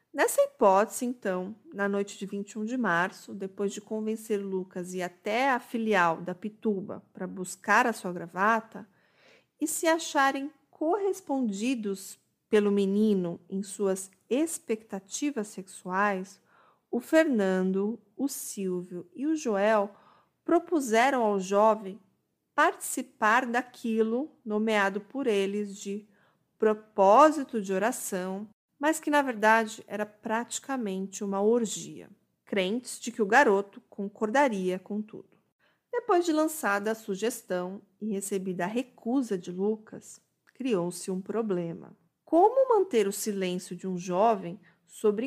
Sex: female